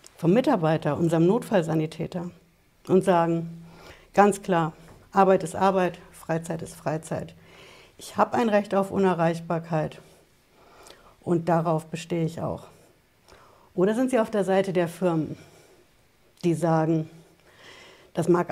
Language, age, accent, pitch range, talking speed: German, 60-79, German, 165-190 Hz, 120 wpm